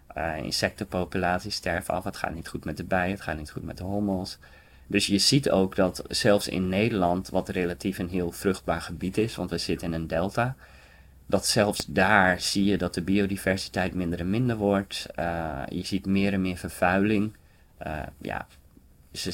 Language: Dutch